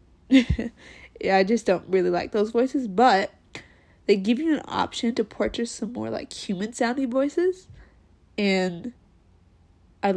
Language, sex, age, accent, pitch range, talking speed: English, female, 20-39, American, 180-205 Hz, 135 wpm